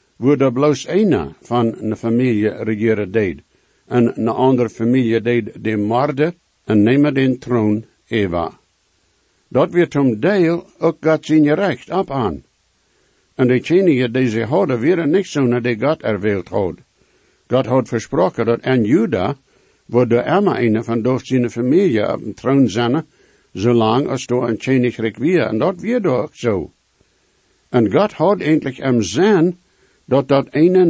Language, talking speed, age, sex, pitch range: English, 160 wpm, 60-79, male, 115-145 Hz